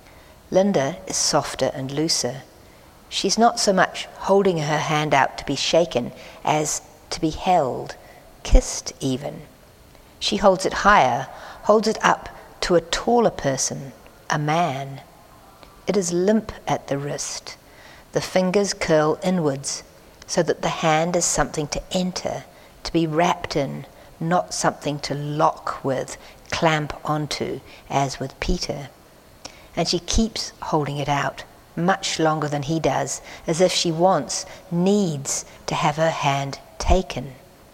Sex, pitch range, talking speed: female, 135-175 Hz, 140 wpm